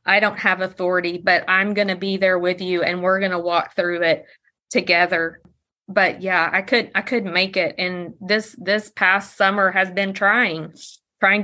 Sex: female